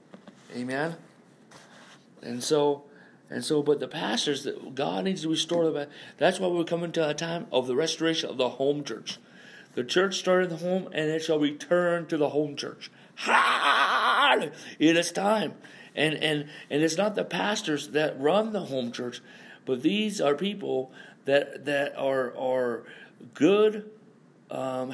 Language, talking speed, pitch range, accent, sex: English, 160 wpm, 125-160 Hz, American, male